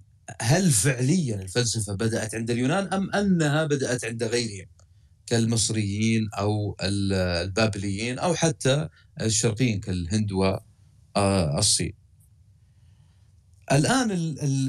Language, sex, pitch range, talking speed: Arabic, male, 100-155 Hz, 90 wpm